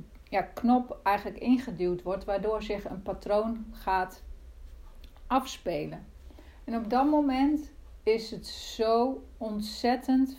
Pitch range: 160-245 Hz